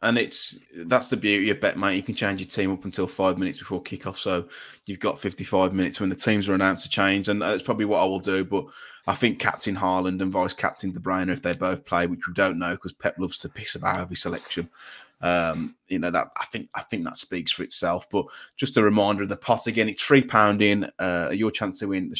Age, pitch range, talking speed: 20-39, 95-120 Hz, 255 wpm